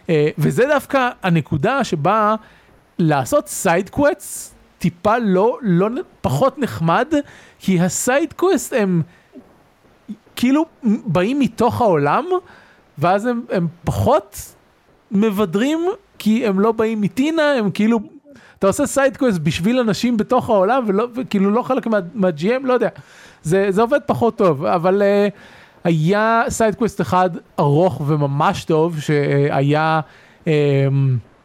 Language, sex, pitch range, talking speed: Hebrew, male, 150-215 Hz, 115 wpm